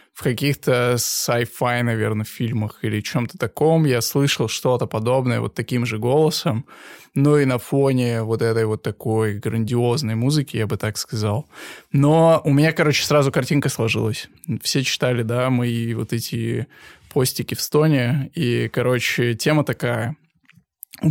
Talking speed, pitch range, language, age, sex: 150 wpm, 120-145 Hz, Russian, 20-39, male